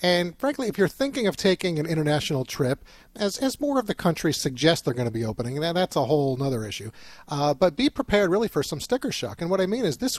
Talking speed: 250 wpm